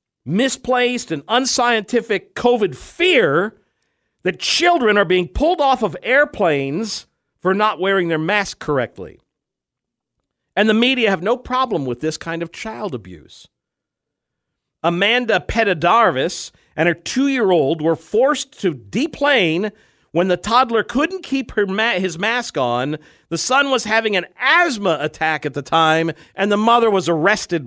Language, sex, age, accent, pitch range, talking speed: English, male, 50-69, American, 150-235 Hz, 140 wpm